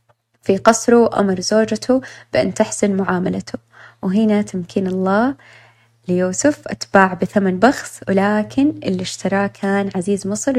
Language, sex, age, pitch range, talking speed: Arabic, female, 20-39, 160-230 Hz, 115 wpm